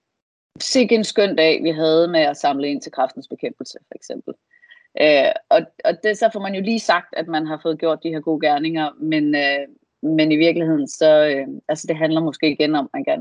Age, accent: 30-49, native